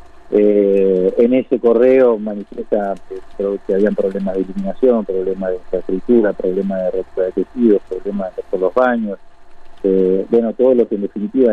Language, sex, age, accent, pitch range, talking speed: Spanish, male, 30-49, Argentinian, 100-125 Hz, 160 wpm